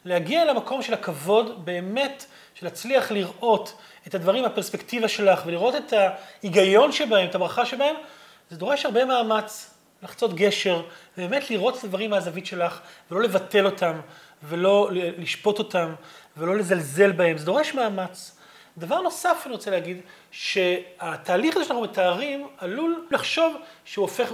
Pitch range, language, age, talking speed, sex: 180-255 Hz, Hebrew, 30-49, 140 wpm, male